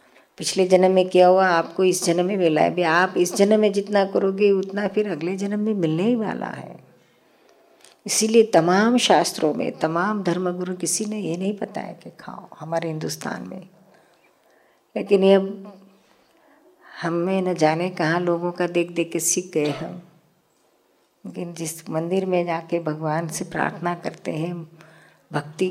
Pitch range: 165-190 Hz